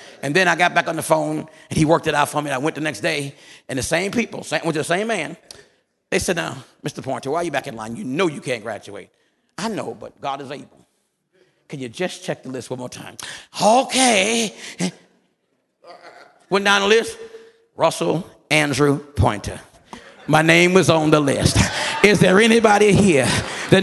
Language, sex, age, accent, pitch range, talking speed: English, male, 50-69, American, 175-235 Hz, 200 wpm